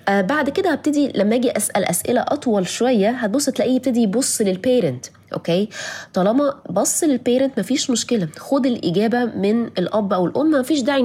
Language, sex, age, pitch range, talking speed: Arabic, female, 20-39, 175-245 Hz, 150 wpm